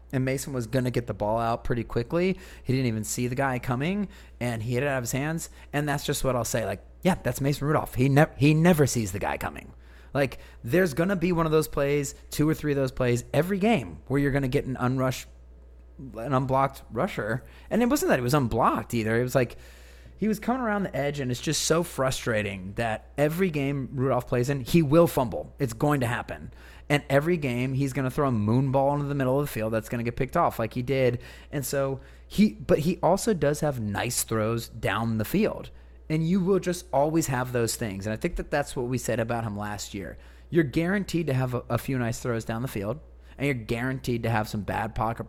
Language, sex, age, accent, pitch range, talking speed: English, male, 30-49, American, 115-145 Hz, 240 wpm